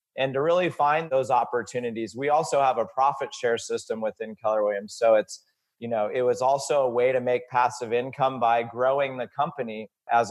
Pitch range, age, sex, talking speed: 120-145 Hz, 30-49, male, 200 wpm